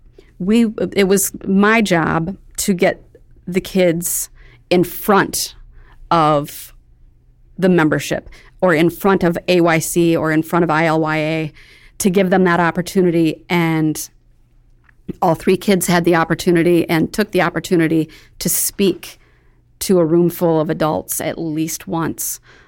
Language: English